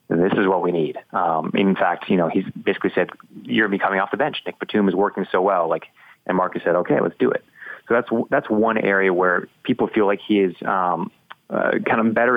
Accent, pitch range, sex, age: American, 95-105 Hz, male, 30-49